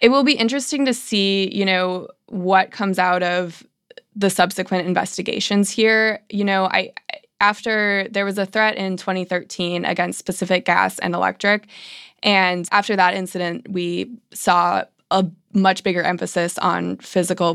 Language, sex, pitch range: English, female, 175-205 Hz